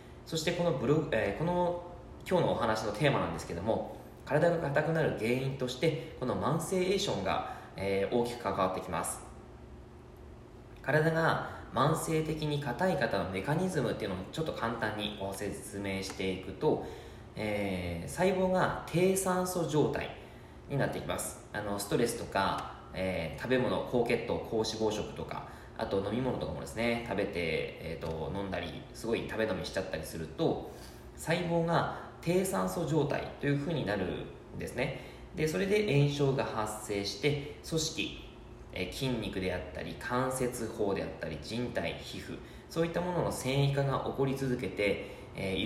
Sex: male